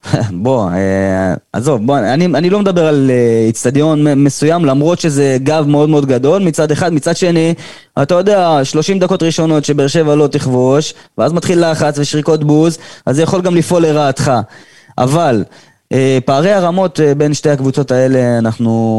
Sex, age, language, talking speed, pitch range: male, 20-39, Hebrew, 165 wpm, 125-160 Hz